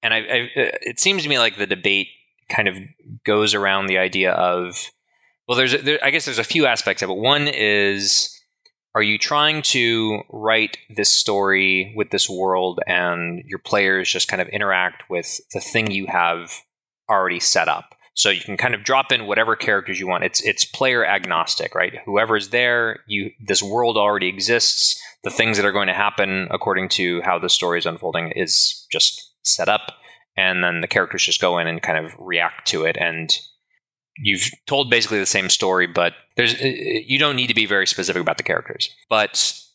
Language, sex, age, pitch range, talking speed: English, male, 20-39, 95-120 Hz, 195 wpm